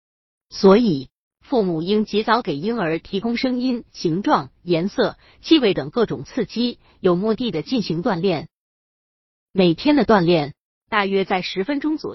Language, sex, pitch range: Chinese, female, 170-235 Hz